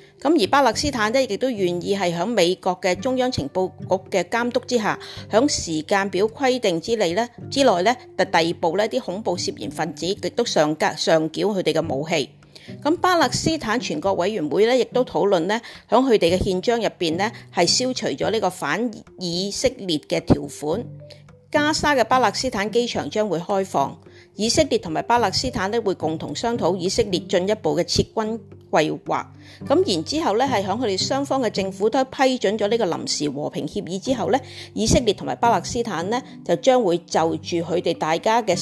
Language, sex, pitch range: Chinese, female, 175-250 Hz